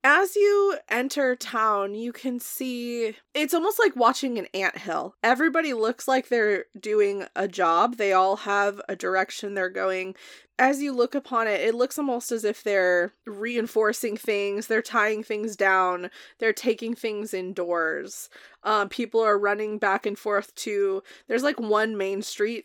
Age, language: 20-39, English